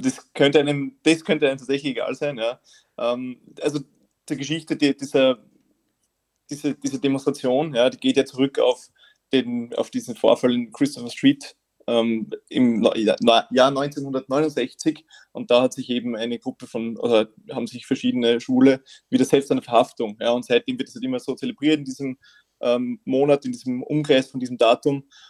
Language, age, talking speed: German, 20-39, 170 wpm